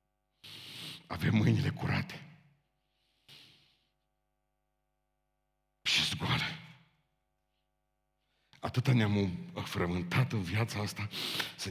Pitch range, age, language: 95-145 Hz, 50-69, Romanian